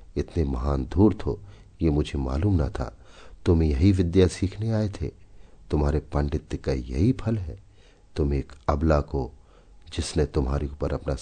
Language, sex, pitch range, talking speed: Hindi, male, 75-95 Hz, 155 wpm